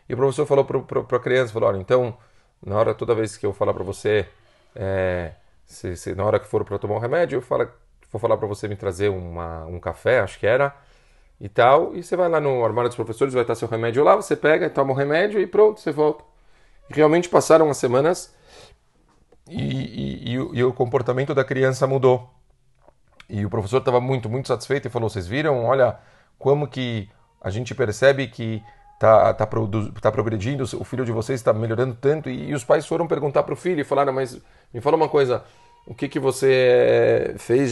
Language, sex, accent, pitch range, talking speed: Portuguese, male, Brazilian, 110-135 Hz, 220 wpm